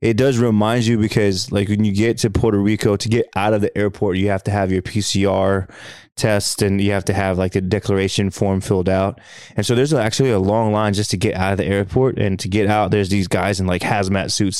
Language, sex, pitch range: English, male, 95-110 Hz